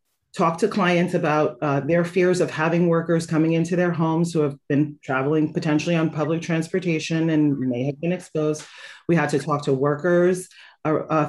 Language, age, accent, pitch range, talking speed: English, 30-49, American, 150-175 Hz, 180 wpm